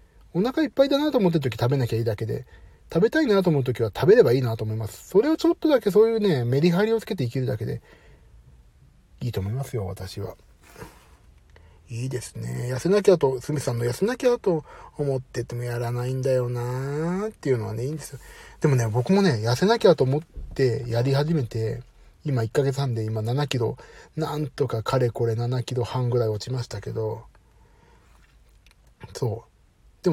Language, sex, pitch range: Japanese, male, 110-155 Hz